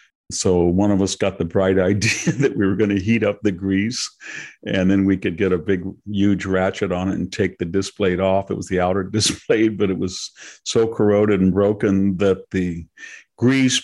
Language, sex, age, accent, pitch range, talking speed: English, male, 50-69, American, 95-110 Hz, 215 wpm